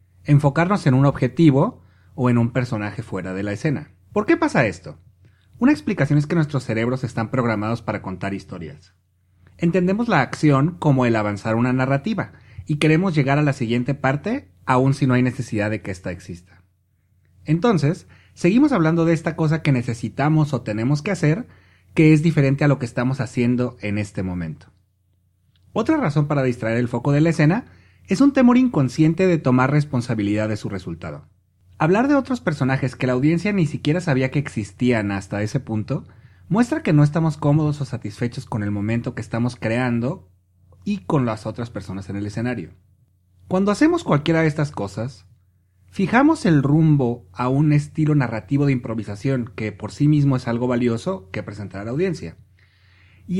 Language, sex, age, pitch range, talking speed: English, male, 30-49, 105-150 Hz, 175 wpm